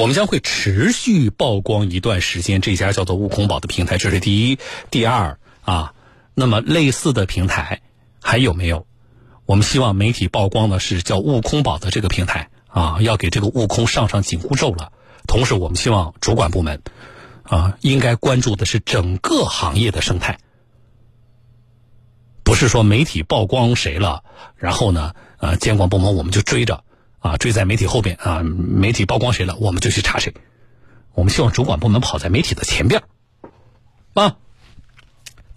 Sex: male